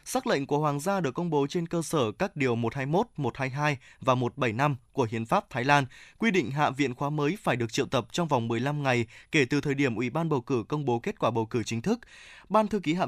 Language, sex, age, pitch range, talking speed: Vietnamese, male, 20-39, 130-175 Hz, 255 wpm